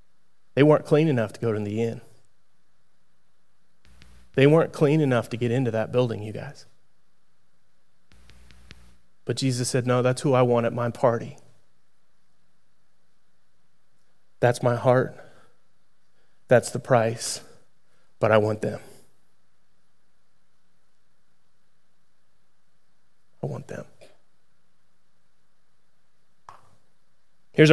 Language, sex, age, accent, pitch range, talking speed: English, male, 30-49, American, 110-180 Hz, 95 wpm